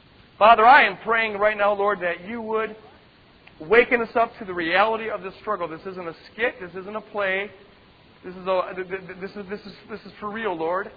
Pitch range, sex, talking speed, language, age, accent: 175-225 Hz, male, 215 wpm, English, 40-59, American